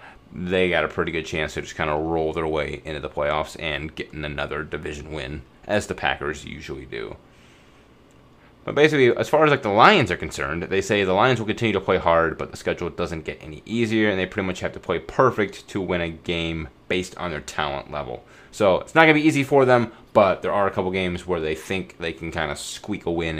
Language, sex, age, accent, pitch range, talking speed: English, male, 30-49, American, 80-100 Hz, 240 wpm